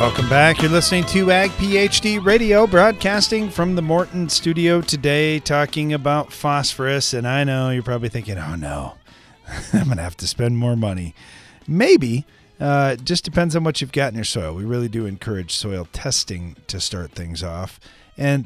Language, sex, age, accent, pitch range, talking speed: English, male, 40-59, American, 90-135 Hz, 180 wpm